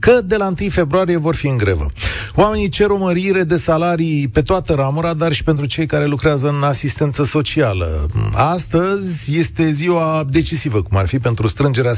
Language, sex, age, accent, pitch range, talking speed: Romanian, male, 40-59, native, 120-175 Hz, 180 wpm